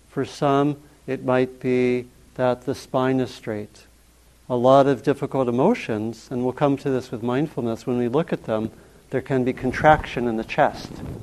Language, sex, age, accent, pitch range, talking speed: English, male, 50-69, American, 120-145 Hz, 180 wpm